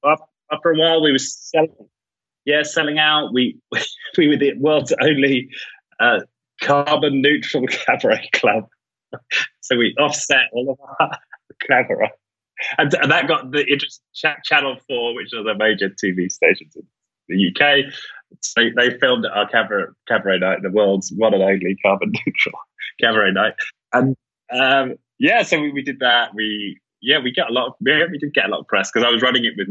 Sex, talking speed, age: male, 180 wpm, 20-39